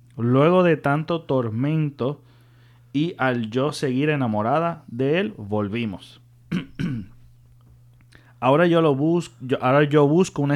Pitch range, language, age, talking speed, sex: 120-150 Hz, Spanish, 30-49, 120 wpm, male